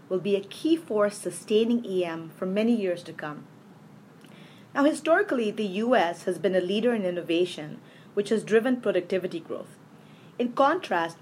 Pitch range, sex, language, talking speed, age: 180-230 Hz, female, English, 155 wpm, 30-49